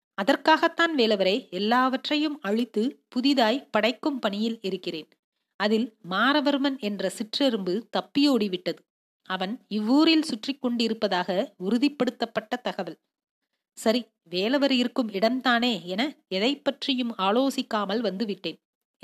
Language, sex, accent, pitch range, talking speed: Tamil, female, native, 200-265 Hz, 95 wpm